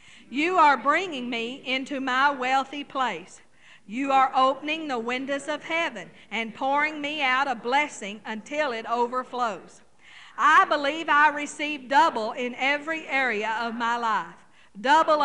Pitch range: 235-300 Hz